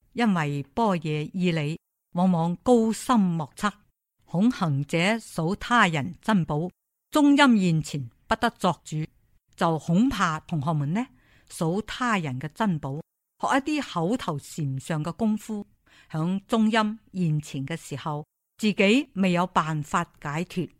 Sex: female